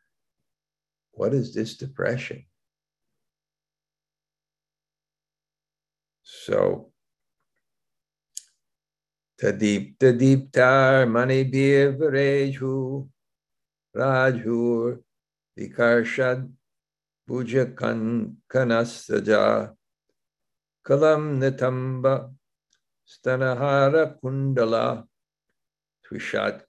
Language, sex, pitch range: English, male, 115-155 Hz